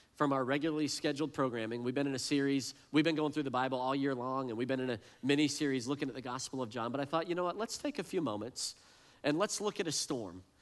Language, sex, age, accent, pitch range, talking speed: English, male, 40-59, American, 125-160 Hz, 275 wpm